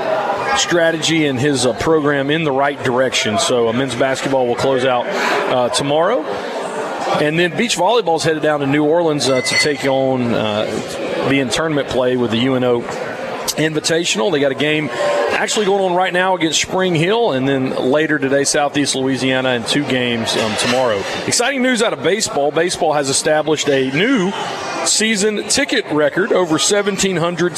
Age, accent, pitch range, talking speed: 40-59, American, 130-165 Hz, 170 wpm